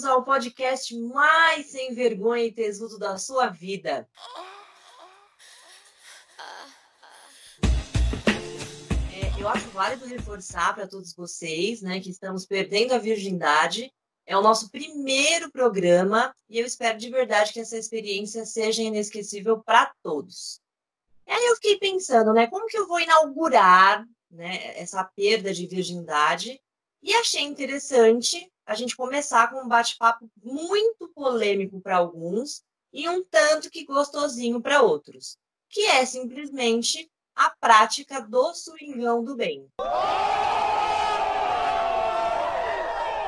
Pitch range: 200-290 Hz